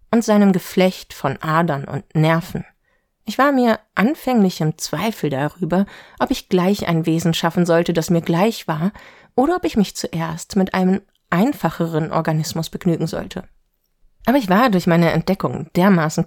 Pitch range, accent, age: 160-200 Hz, German, 30-49